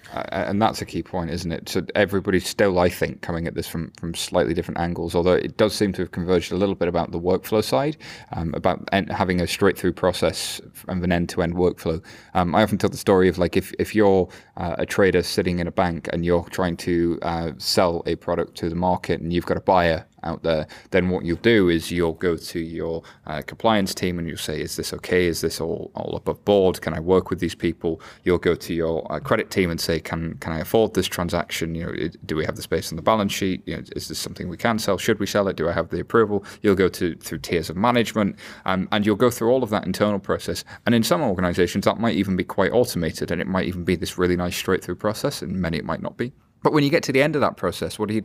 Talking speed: 265 wpm